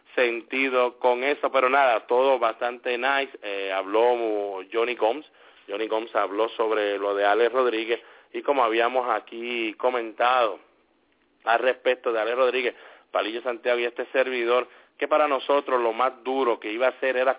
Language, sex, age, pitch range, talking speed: English, male, 30-49, 115-130 Hz, 160 wpm